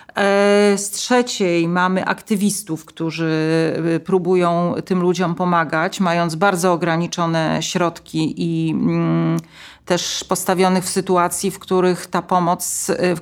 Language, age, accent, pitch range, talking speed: Polish, 40-59, native, 175-220 Hz, 90 wpm